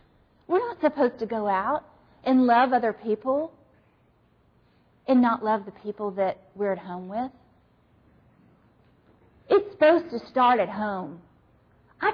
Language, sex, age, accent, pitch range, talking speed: English, female, 40-59, American, 215-290 Hz, 135 wpm